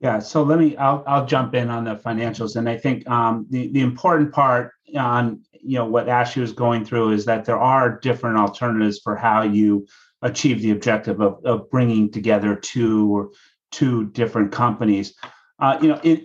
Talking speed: 190 wpm